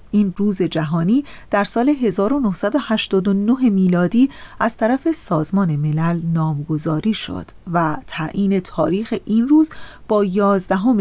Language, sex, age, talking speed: Persian, female, 40-59, 110 wpm